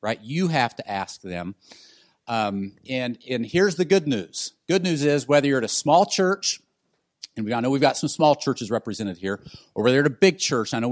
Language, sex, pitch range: English, male, 115-155 Hz